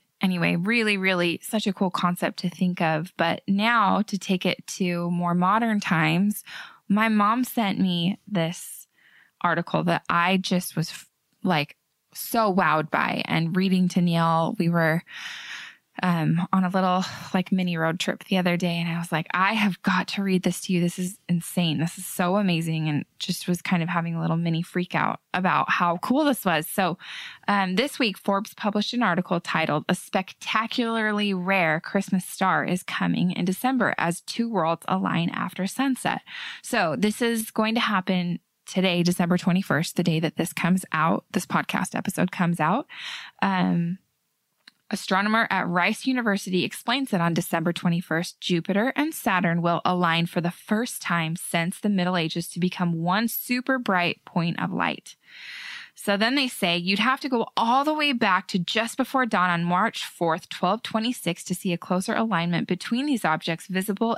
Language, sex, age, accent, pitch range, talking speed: English, female, 20-39, American, 175-215 Hz, 175 wpm